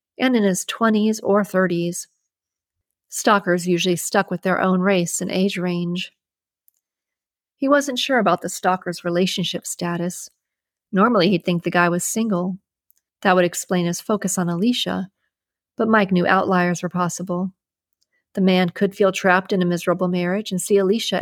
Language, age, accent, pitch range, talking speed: English, 40-59, American, 180-205 Hz, 160 wpm